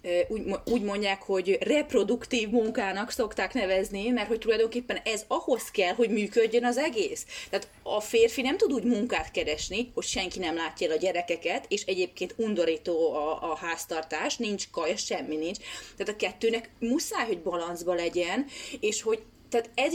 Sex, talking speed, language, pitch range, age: female, 160 wpm, Hungarian, 185-255 Hz, 30-49